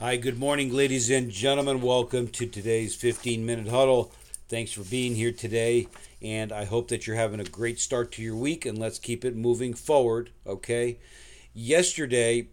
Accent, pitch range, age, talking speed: American, 115-130 Hz, 50-69, 175 wpm